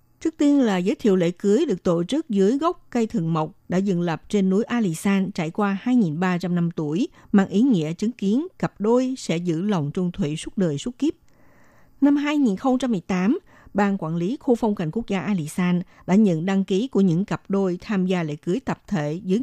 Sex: female